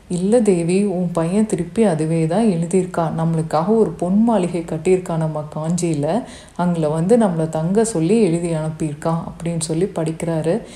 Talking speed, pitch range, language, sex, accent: 130 wpm, 165-190 Hz, Tamil, female, native